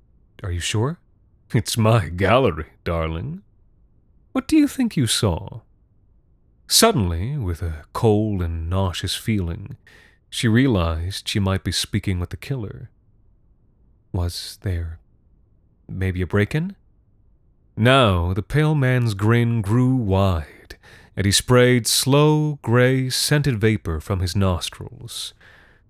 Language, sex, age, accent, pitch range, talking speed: English, male, 30-49, American, 95-125 Hz, 120 wpm